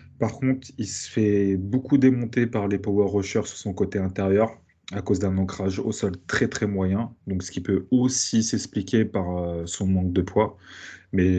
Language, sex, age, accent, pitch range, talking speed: French, male, 20-39, French, 95-110 Hz, 190 wpm